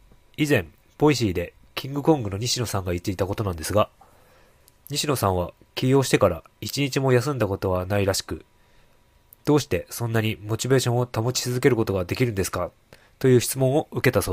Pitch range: 100-125 Hz